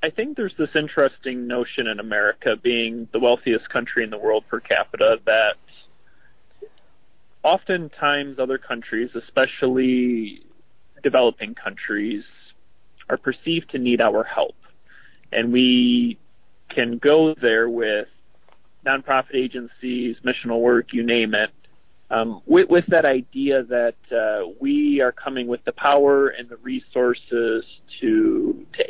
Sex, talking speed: male, 125 wpm